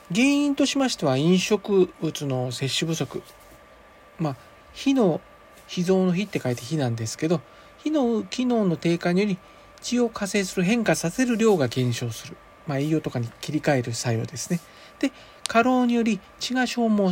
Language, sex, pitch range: Japanese, male, 140-225 Hz